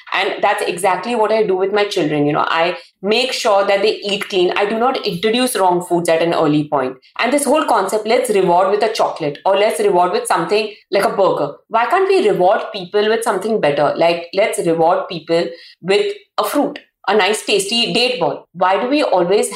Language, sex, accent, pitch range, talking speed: English, female, Indian, 165-220 Hz, 210 wpm